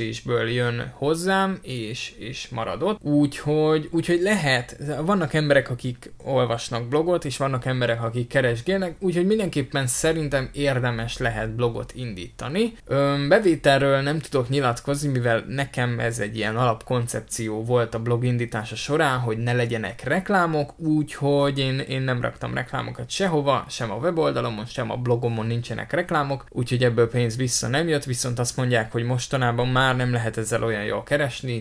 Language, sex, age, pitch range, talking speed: Hungarian, male, 20-39, 115-140 Hz, 150 wpm